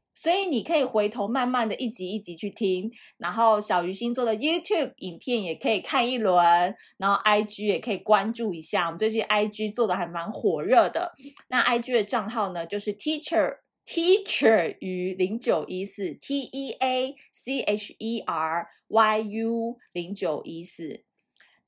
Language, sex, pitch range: Chinese, female, 195-245 Hz